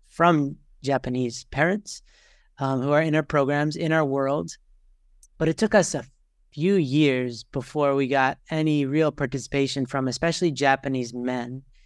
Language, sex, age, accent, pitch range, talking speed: English, male, 30-49, American, 130-160 Hz, 145 wpm